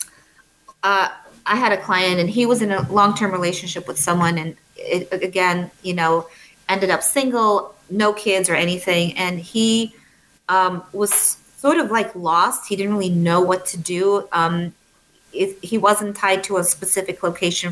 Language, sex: English, female